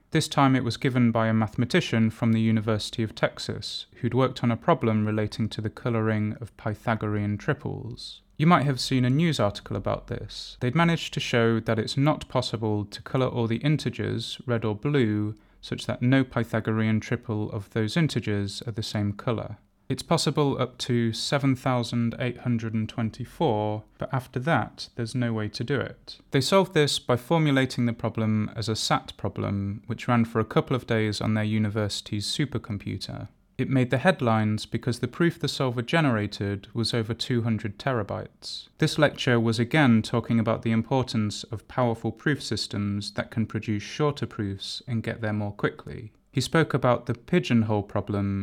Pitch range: 110-130 Hz